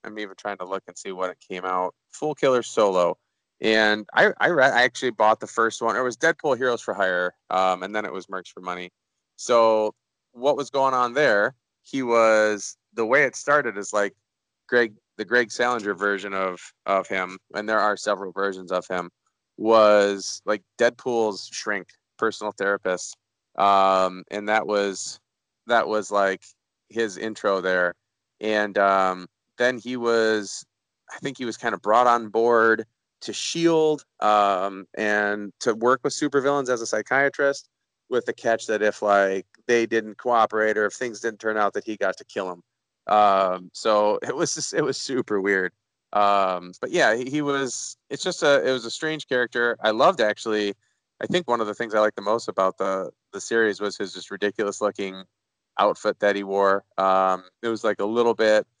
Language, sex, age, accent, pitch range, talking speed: English, male, 20-39, American, 100-120 Hz, 190 wpm